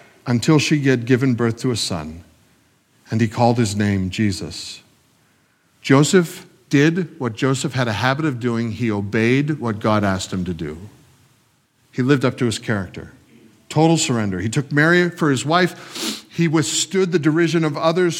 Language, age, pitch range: English, 50-69, 120-165 Hz